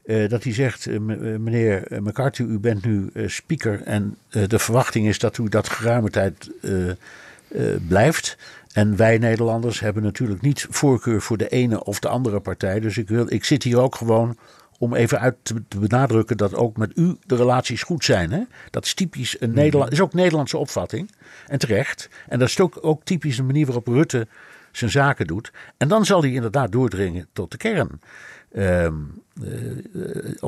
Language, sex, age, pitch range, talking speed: Dutch, male, 60-79, 100-125 Hz, 180 wpm